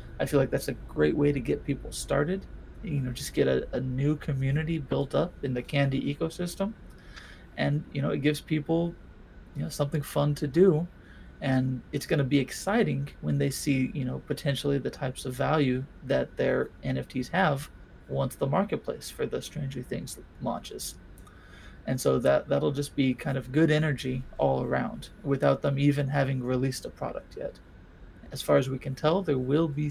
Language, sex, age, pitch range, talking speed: English, male, 30-49, 125-150 Hz, 185 wpm